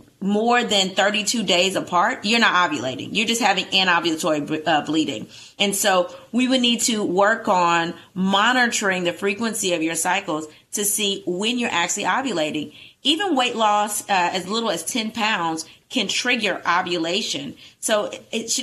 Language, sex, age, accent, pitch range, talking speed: English, female, 30-49, American, 170-215 Hz, 155 wpm